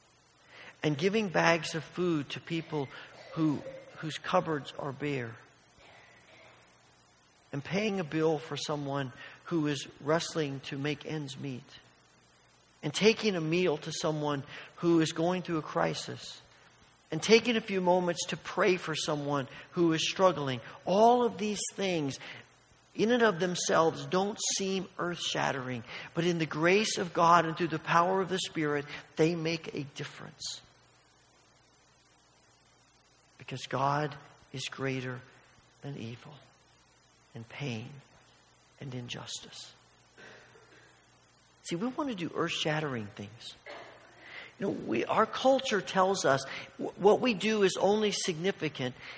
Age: 50-69